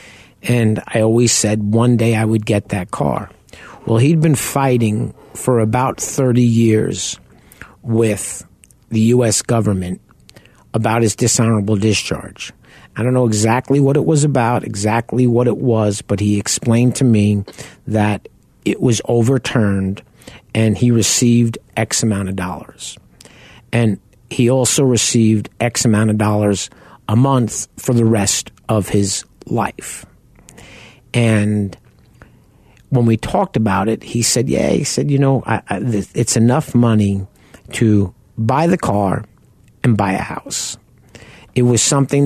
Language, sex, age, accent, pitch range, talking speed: English, male, 50-69, American, 105-125 Hz, 145 wpm